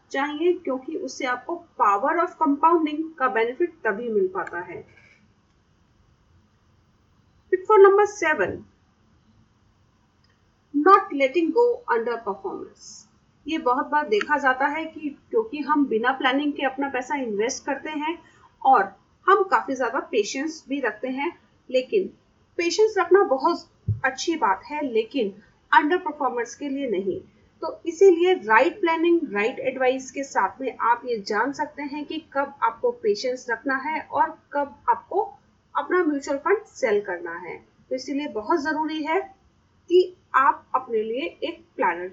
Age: 30-49